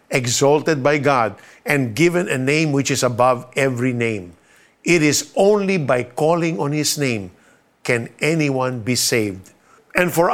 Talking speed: 150 wpm